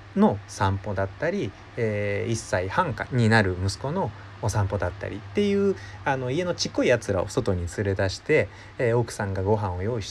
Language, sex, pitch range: Japanese, male, 100-130 Hz